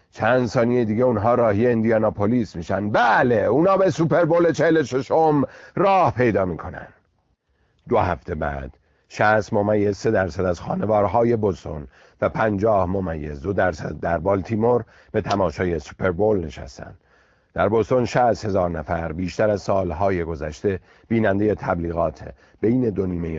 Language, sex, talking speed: Persian, male, 130 wpm